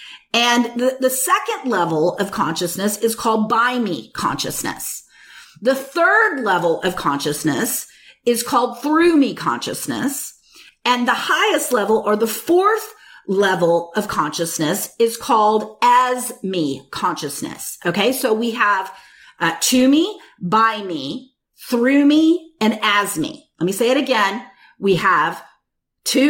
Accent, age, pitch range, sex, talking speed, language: American, 40-59, 200-280 Hz, female, 135 wpm, English